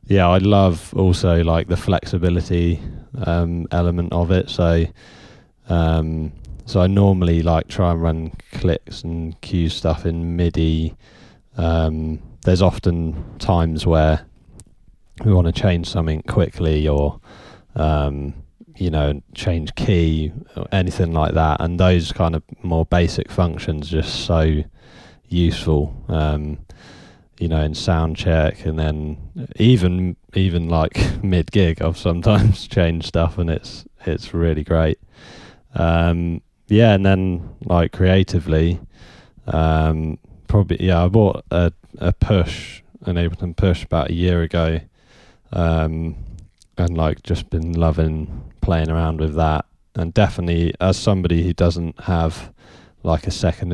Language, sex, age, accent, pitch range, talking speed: English, male, 20-39, British, 80-95 Hz, 135 wpm